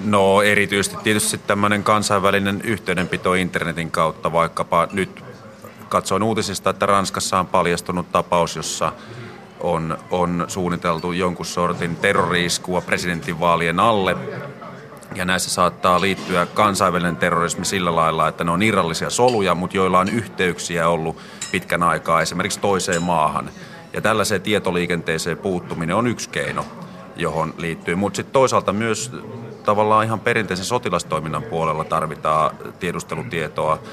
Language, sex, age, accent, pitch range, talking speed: Finnish, male, 30-49, native, 85-100 Hz, 120 wpm